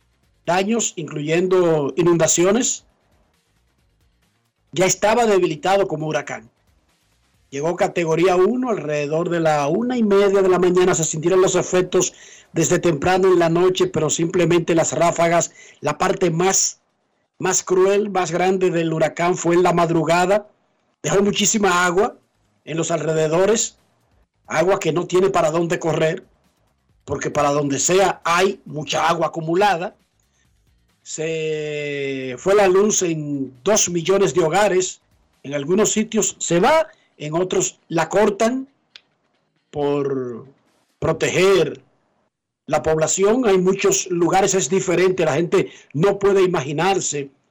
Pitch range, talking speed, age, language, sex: 155-190 Hz, 125 wpm, 50-69, Spanish, male